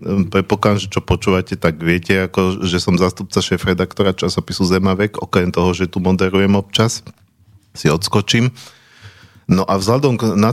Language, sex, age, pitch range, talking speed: Slovak, male, 40-59, 95-105 Hz, 155 wpm